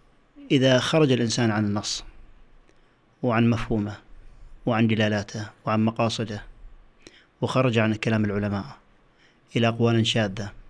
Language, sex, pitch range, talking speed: Arabic, male, 110-125 Hz, 100 wpm